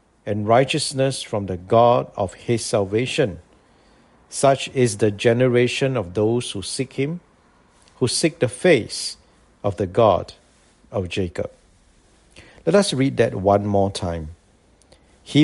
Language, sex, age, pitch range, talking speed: English, male, 50-69, 100-130 Hz, 130 wpm